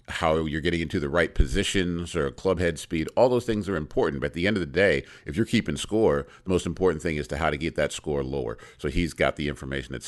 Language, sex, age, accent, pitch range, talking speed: English, male, 50-69, American, 65-85 Hz, 260 wpm